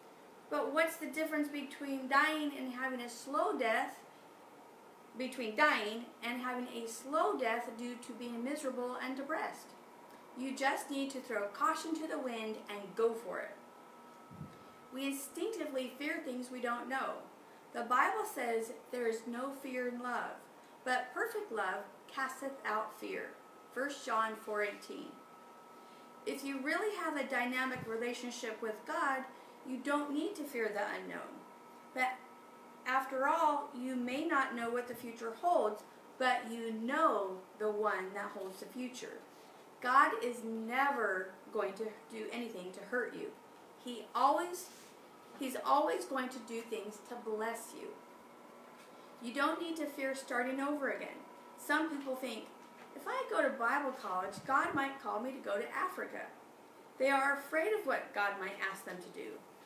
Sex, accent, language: female, American, English